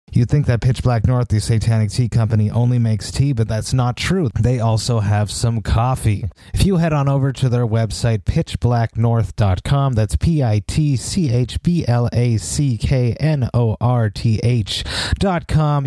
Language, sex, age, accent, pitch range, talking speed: English, male, 30-49, American, 110-135 Hz, 125 wpm